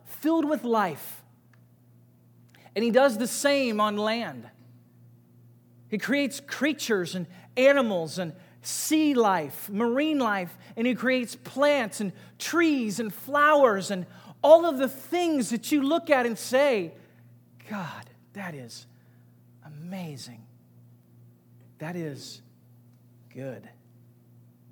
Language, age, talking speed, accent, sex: English, 40-59, 110 wpm, American, male